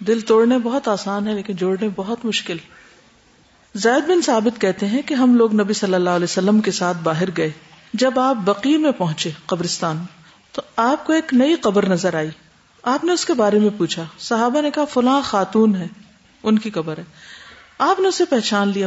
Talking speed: 195 wpm